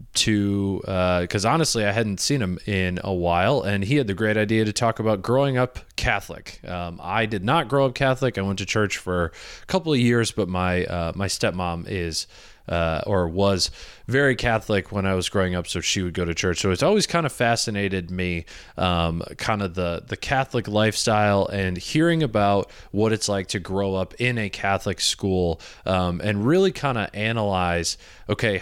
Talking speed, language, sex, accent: 200 wpm, English, male, American